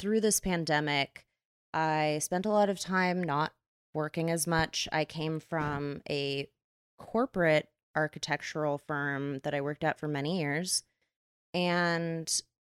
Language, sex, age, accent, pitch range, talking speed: English, female, 20-39, American, 150-185 Hz, 135 wpm